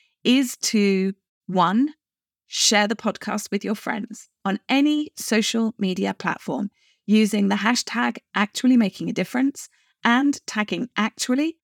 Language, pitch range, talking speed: English, 190-240 Hz, 125 wpm